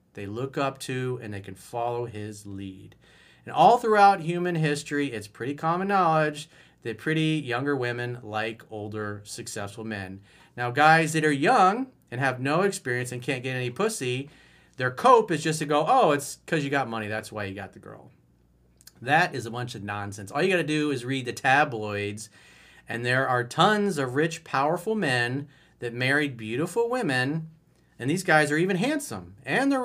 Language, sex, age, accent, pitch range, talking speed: English, male, 40-59, American, 105-160 Hz, 190 wpm